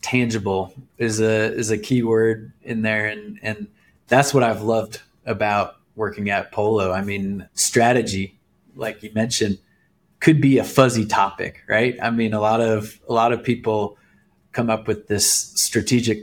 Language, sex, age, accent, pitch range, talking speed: English, male, 20-39, American, 105-115 Hz, 165 wpm